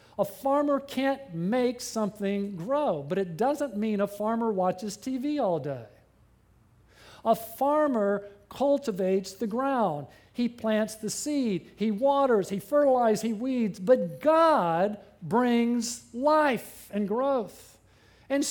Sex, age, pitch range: male, 50-69, 155-235 Hz